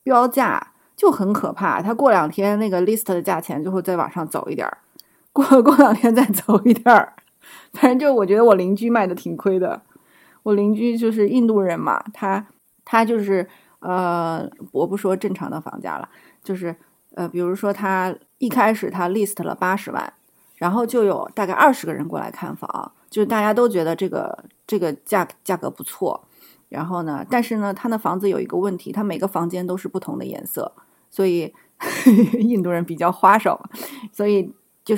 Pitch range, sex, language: 180-230 Hz, female, Chinese